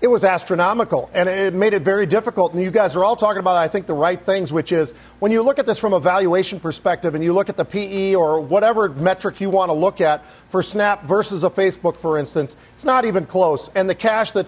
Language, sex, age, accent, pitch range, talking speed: English, male, 40-59, American, 175-210 Hz, 255 wpm